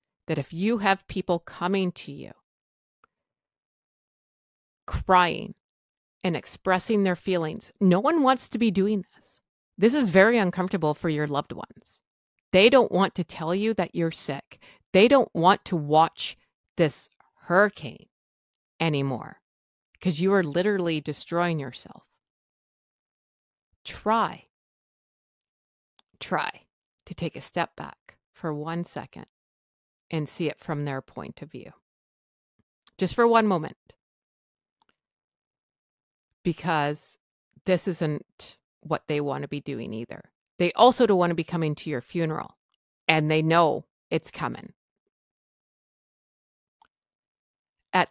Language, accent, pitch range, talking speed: English, American, 155-190 Hz, 125 wpm